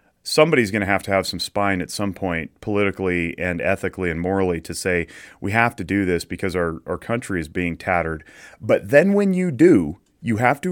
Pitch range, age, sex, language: 85-105 Hz, 30-49, male, English